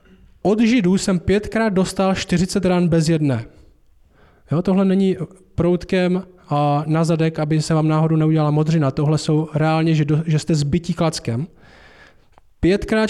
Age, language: 20-39, Czech